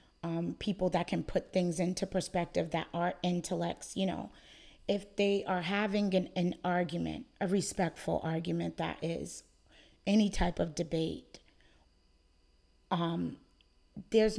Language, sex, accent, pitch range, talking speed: English, female, American, 170-195 Hz, 130 wpm